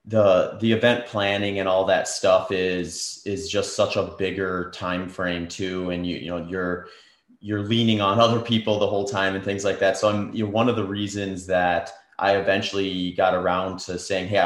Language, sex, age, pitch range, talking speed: English, male, 30-49, 90-100 Hz, 210 wpm